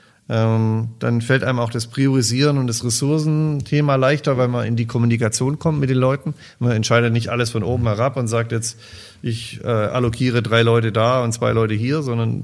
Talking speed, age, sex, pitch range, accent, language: 200 wpm, 40-59, male, 115-135 Hz, German, German